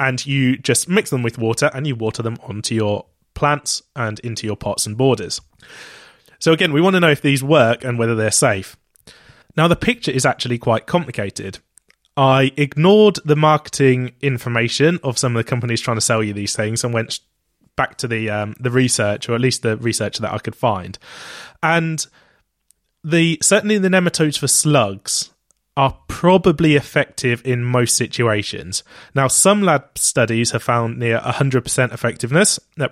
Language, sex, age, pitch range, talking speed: English, male, 20-39, 115-145 Hz, 175 wpm